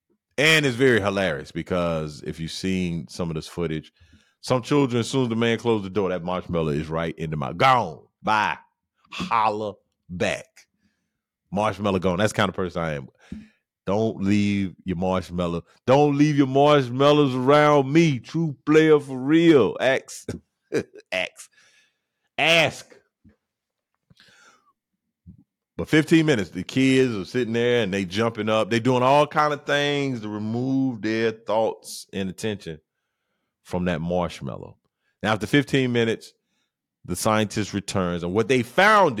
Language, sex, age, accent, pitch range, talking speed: English, male, 40-59, American, 90-130 Hz, 150 wpm